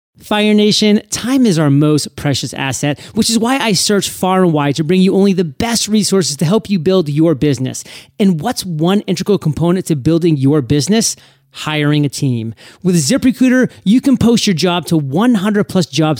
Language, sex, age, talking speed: English, male, 40-59, 195 wpm